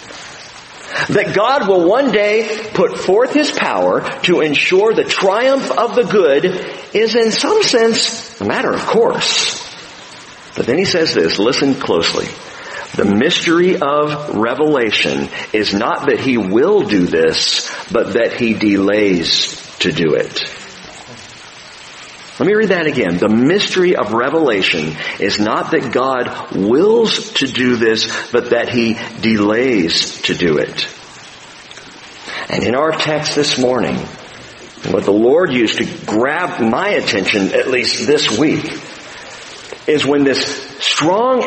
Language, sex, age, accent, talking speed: English, male, 50-69, American, 135 wpm